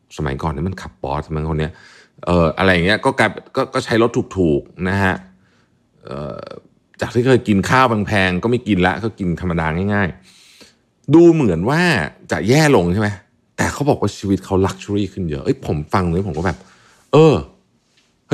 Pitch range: 80-110 Hz